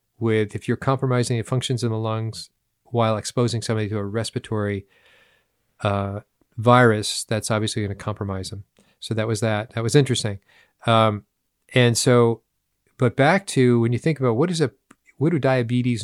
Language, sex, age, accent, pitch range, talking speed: English, male, 40-59, American, 110-130 Hz, 170 wpm